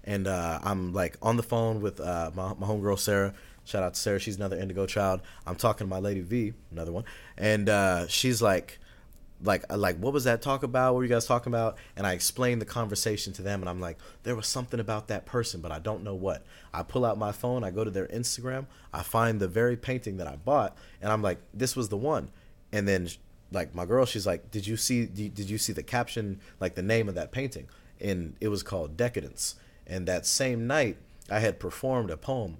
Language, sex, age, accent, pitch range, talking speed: English, male, 30-49, American, 95-115 Hz, 235 wpm